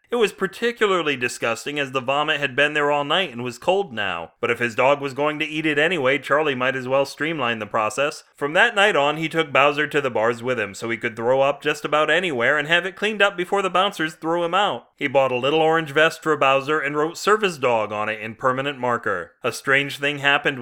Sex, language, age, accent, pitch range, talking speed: male, English, 30-49, American, 120-150 Hz, 245 wpm